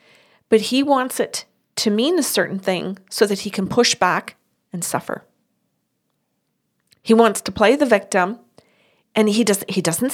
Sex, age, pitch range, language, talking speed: female, 40-59, 195-235 Hz, English, 165 wpm